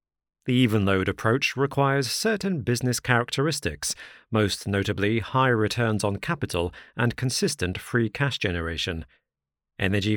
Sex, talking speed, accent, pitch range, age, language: male, 110 wpm, British, 100-125 Hz, 40-59, English